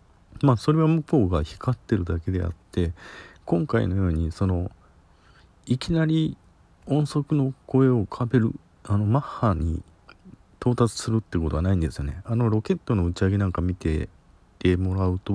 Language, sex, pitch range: Japanese, male, 85-115 Hz